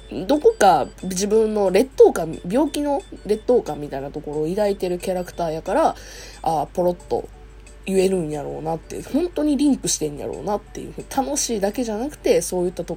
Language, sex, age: Japanese, female, 20-39